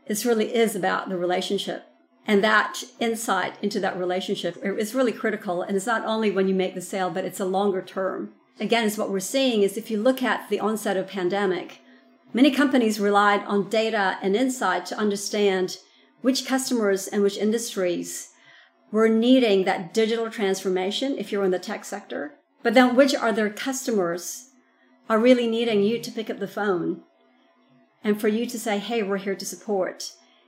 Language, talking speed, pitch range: English, 185 wpm, 190-225 Hz